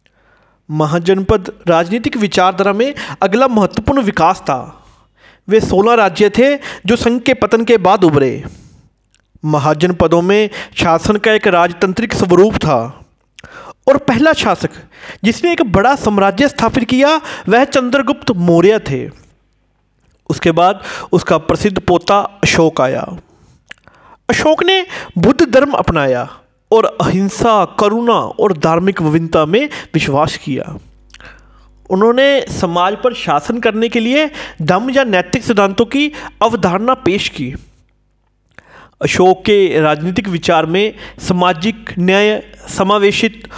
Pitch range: 175-240 Hz